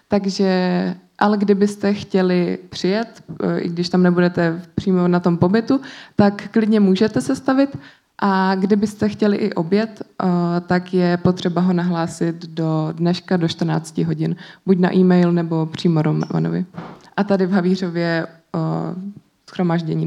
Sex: female